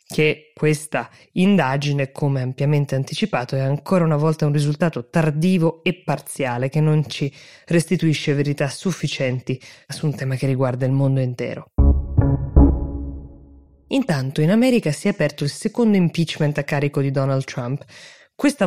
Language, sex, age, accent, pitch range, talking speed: Italian, female, 20-39, native, 140-175 Hz, 140 wpm